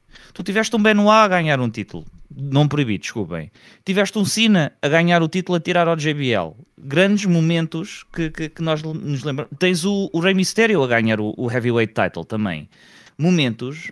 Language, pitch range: Portuguese, 150-200 Hz